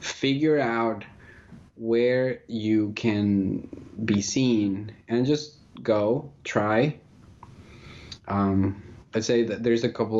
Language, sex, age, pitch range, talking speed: English, male, 20-39, 105-120 Hz, 105 wpm